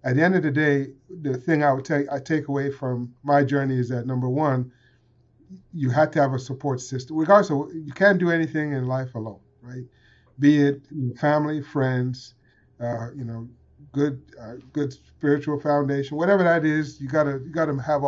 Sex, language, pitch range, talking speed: male, English, 125-150 Hz, 195 wpm